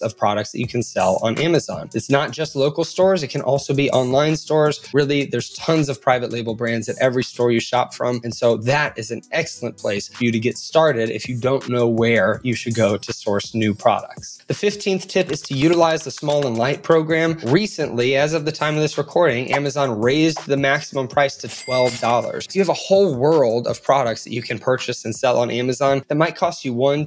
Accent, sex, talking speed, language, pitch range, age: American, male, 225 wpm, English, 115-150 Hz, 20-39